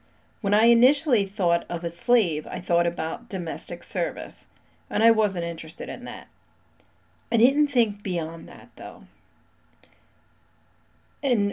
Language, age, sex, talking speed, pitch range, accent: English, 40-59, female, 130 wpm, 165-220 Hz, American